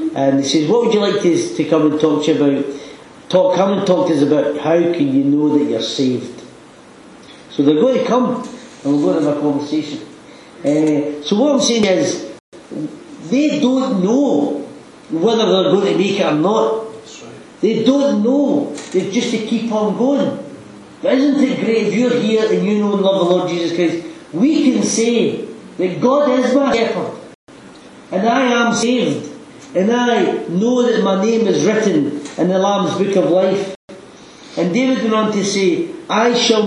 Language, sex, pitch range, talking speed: English, male, 180-245 Hz, 190 wpm